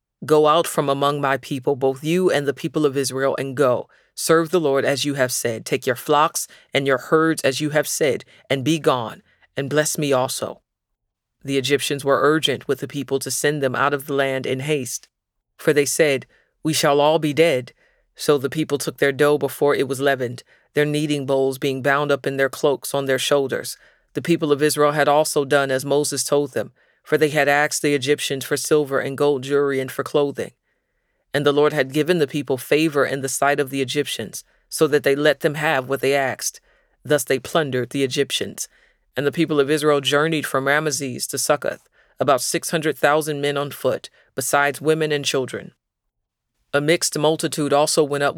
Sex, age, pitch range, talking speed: female, 40-59, 135-150 Hz, 205 wpm